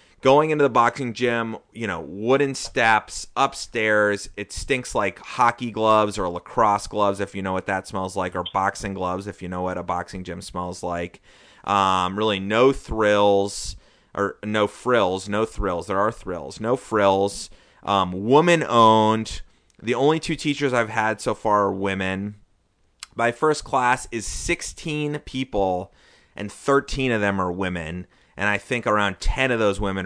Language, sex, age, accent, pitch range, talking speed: English, male, 30-49, American, 95-120 Hz, 165 wpm